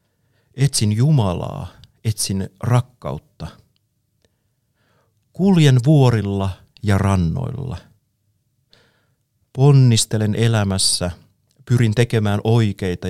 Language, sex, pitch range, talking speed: Finnish, male, 95-120 Hz, 60 wpm